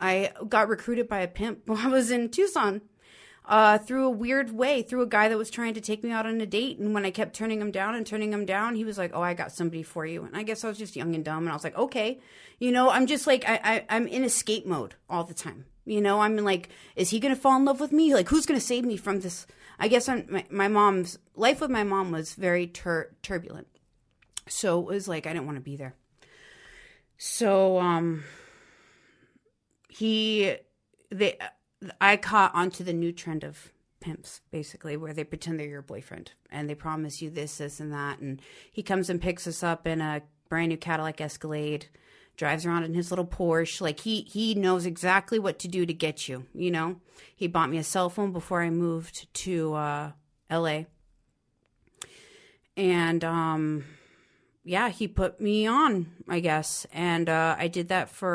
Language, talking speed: English, 215 wpm